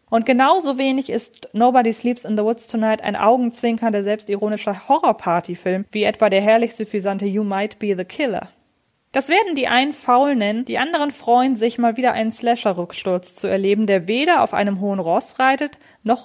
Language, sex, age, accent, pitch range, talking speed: German, female, 20-39, German, 205-255 Hz, 175 wpm